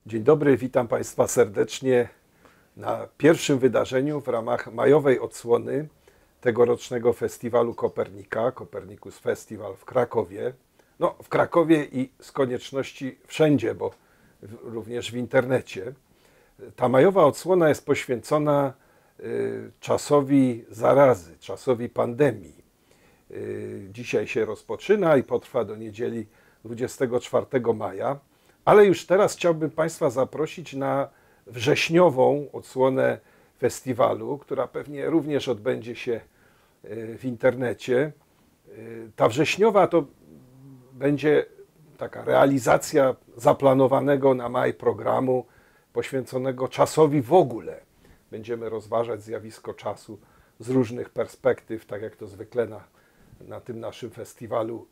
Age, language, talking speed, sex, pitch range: 50-69, Polish, 105 wpm, male, 120-160 Hz